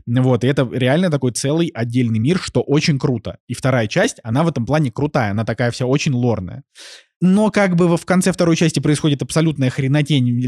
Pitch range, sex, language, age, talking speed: 125-155 Hz, male, Russian, 20-39, 195 wpm